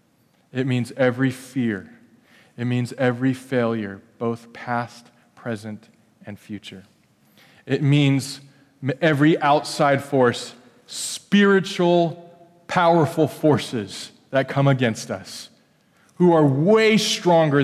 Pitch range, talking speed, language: 110-135 Hz, 100 wpm, English